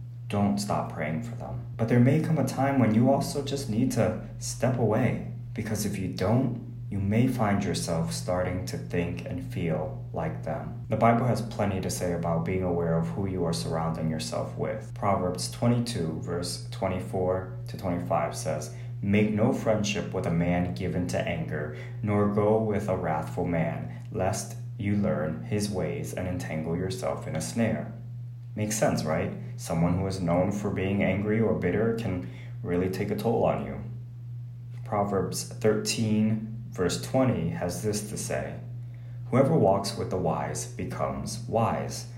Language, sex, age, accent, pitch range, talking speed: English, male, 30-49, American, 95-120 Hz, 165 wpm